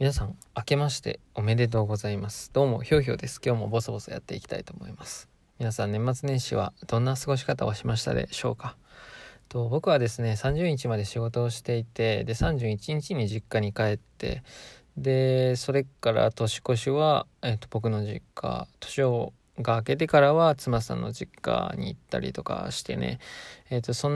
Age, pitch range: 20-39, 110-140 Hz